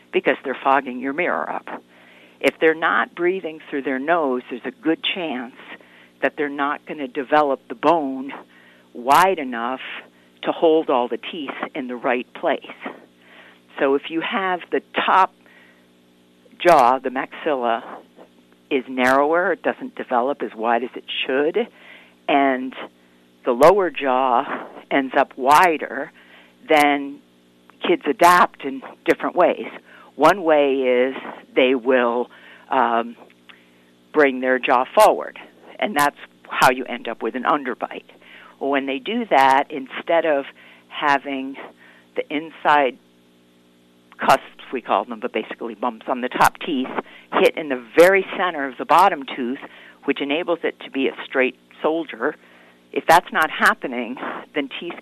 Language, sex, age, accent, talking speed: English, female, 50-69, American, 140 wpm